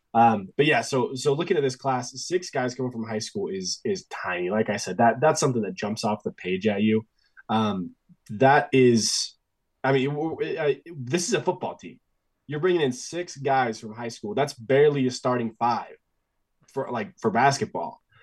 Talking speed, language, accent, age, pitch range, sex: 205 wpm, English, American, 20-39, 110-135 Hz, male